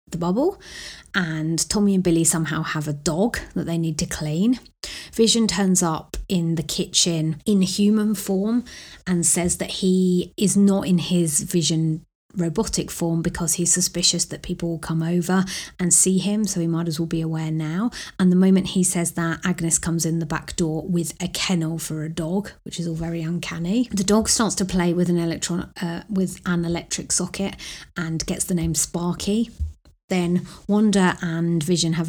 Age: 30-49